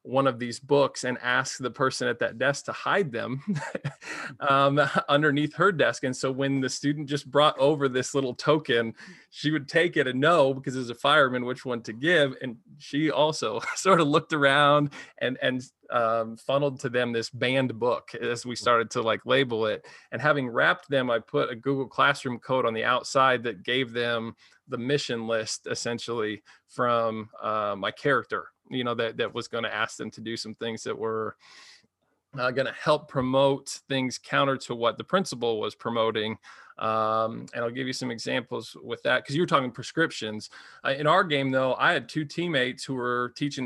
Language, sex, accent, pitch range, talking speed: English, male, American, 115-140 Hz, 200 wpm